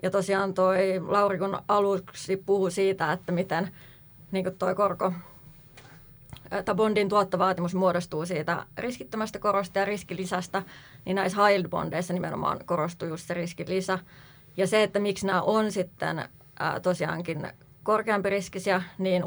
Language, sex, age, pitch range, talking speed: Finnish, female, 20-39, 170-195 Hz, 115 wpm